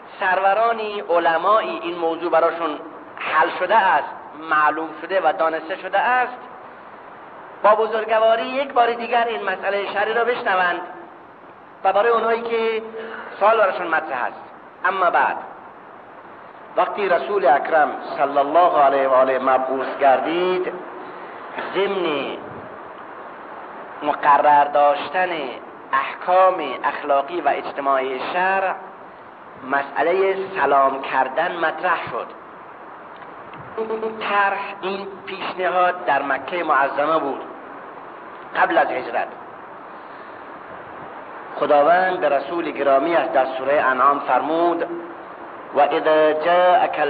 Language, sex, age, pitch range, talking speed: Persian, male, 40-59, 145-195 Hz, 100 wpm